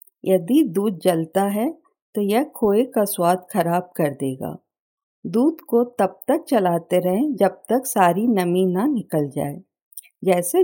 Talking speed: 145 wpm